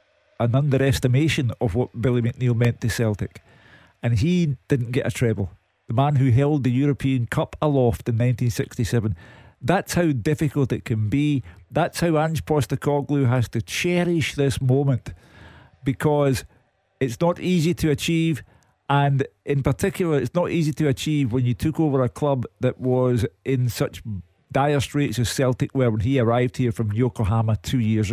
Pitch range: 115-140 Hz